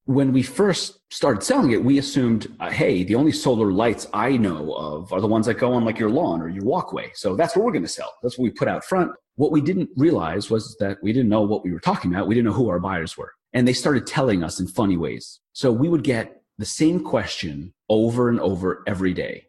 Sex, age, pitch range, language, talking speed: male, 30-49, 95-130 Hz, English, 255 wpm